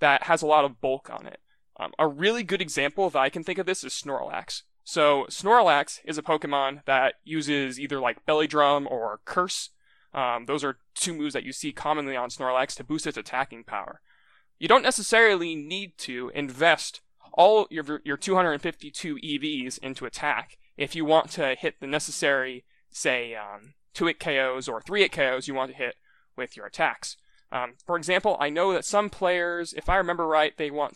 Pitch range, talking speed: 135-170 Hz, 195 wpm